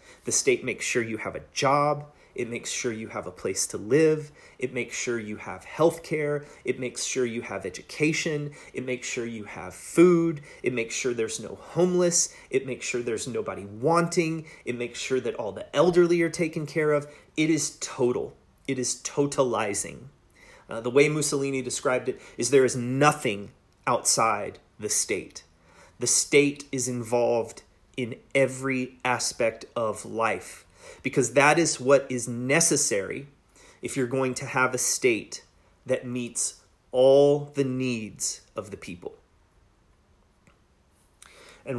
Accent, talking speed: American, 155 wpm